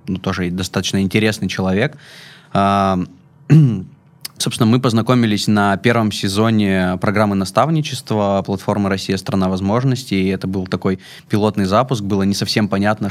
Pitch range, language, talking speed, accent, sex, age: 95-120 Hz, Russian, 130 wpm, native, male, 20-39